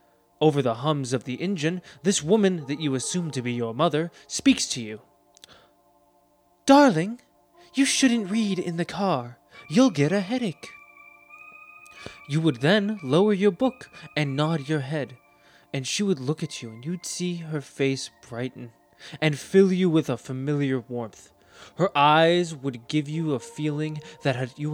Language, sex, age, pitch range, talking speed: English, male, 20-39, 130-195 Hz, 165 wpm